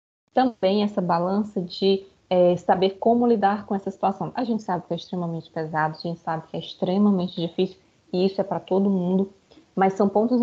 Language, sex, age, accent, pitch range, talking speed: Portuguese, female, 20-39, Brazilian, 185-225 Hz, 195 wpm